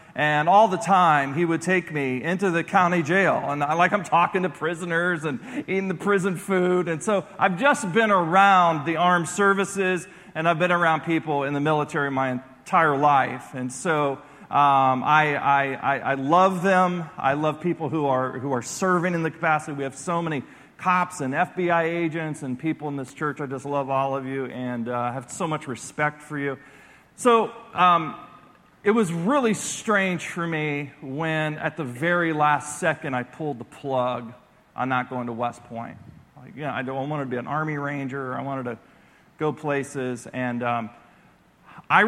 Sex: male